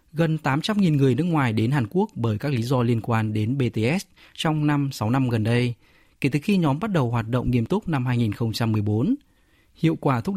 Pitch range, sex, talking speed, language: 120-155 Hz, male, 215 wpm, Vietnamese